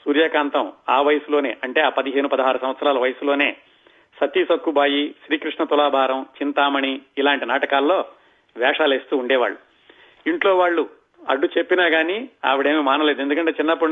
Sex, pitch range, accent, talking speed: male, 140-160 Hz, native, 115 wpm